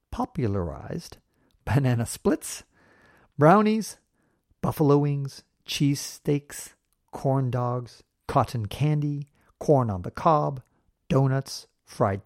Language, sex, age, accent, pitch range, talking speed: English, male, 50-69, American, 120-155 Hz, 90 wpm